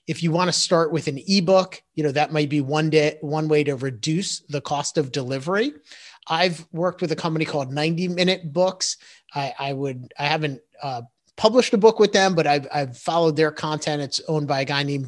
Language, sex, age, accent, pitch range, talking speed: English, male, 30-49, American, 135-160 Hz, 220 wpm